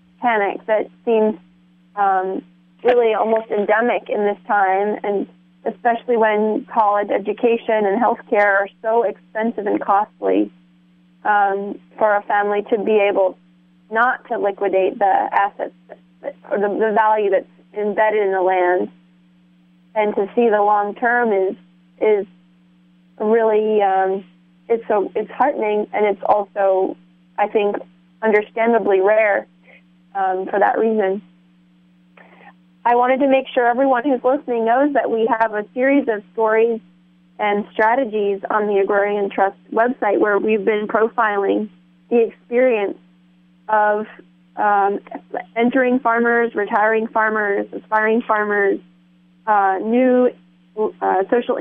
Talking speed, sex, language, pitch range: 130 wpm, female, English, 185-225 Hz